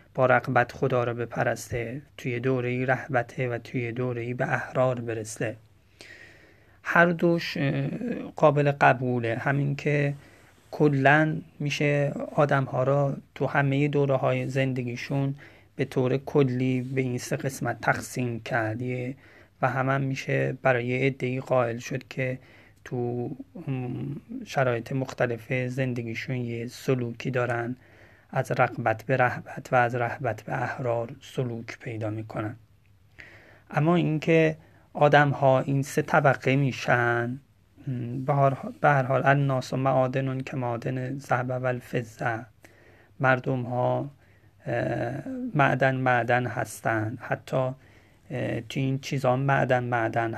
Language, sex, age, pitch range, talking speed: Persian, male, 30-49, 120-135 Hz, 110 wpm